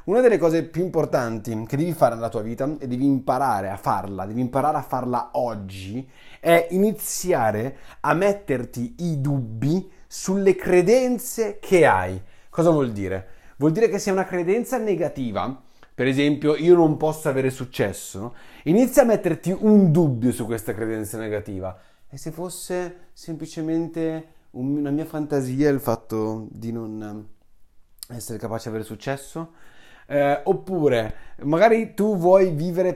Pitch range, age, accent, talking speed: 115-170 Hz, 30-49, native, 145 wpm